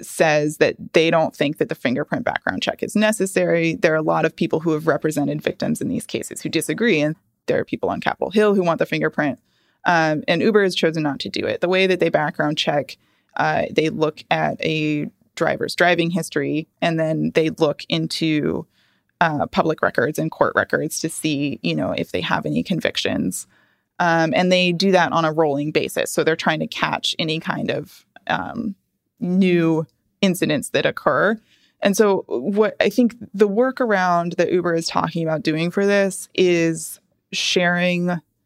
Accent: American